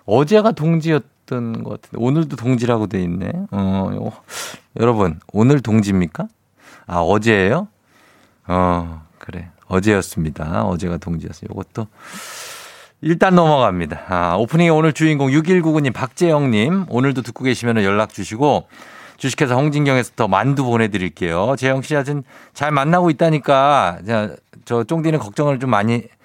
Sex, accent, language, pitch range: male, native, Korean, 95-135 Hz